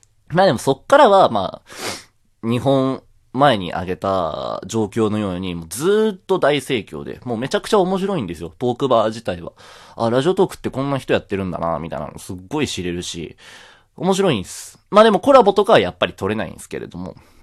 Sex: male